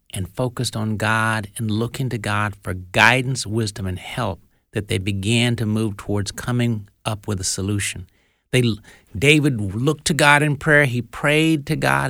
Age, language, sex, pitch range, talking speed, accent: 60-79, English, male, 110-145 Hz, 175 wpm, American